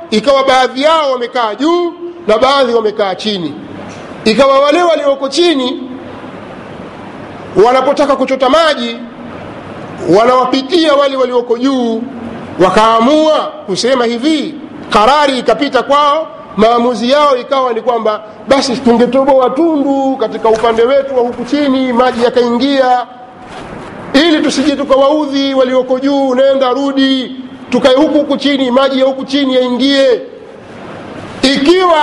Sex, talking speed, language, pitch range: male, 110 wpm, Swahili, 230-285 Hz